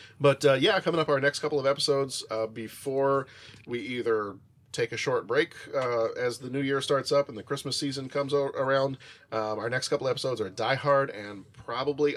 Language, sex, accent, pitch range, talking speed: English, male, American, 115-145 Hz, 210 wpm